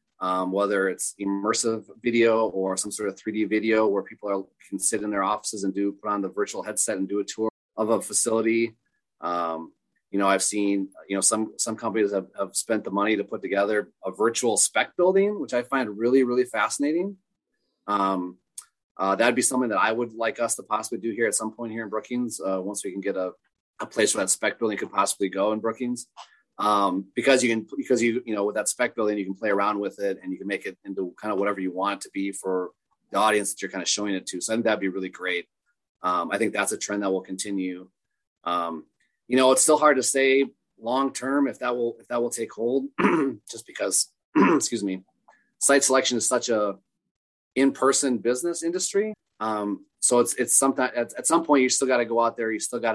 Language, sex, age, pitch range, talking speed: English, male, 30-49, 100-125 Hz, 230 wpm